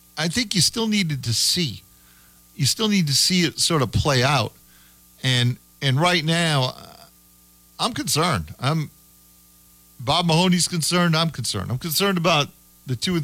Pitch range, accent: 125-165 Hz, American